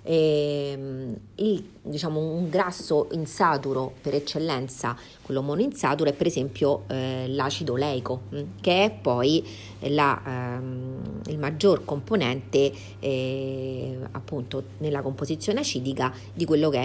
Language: Italian